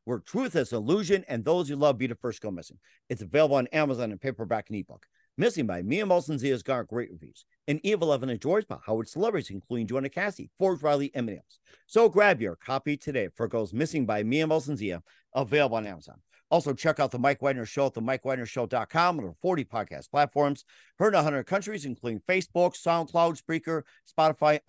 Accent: American